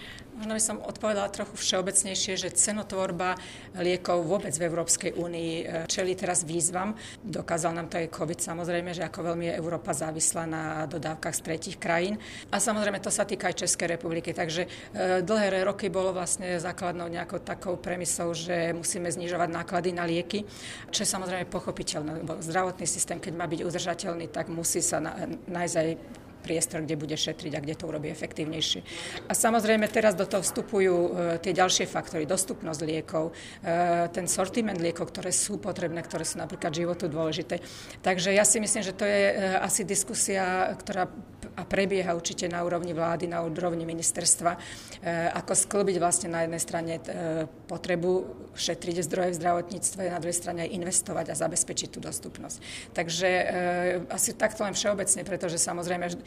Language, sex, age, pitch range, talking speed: Czech, female, 40-59, 170-190 Hz, 155 wpm